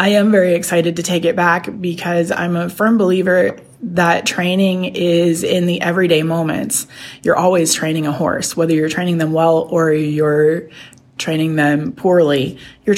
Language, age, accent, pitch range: English, 20-39, American, 150-175 Hz